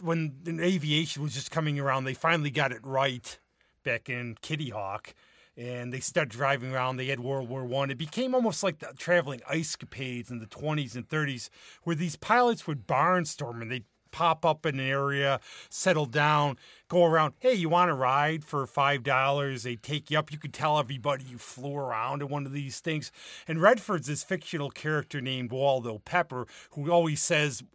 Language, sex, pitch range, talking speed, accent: English, male, 135-165 Hz, 190 wpm, American